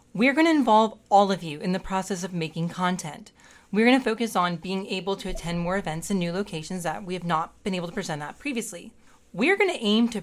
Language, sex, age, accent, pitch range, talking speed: English, female, 30-49, American, 165-210 Hz, 230 wpm